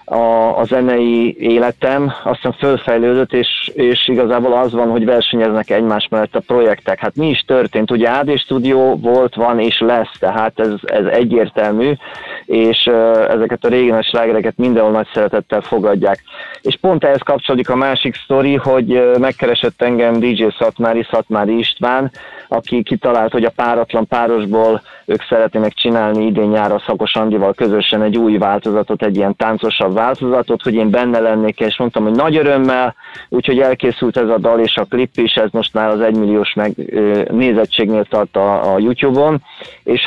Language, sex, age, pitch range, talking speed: Hungarian, male, 20-39, 110-125 Hz, 155 wpm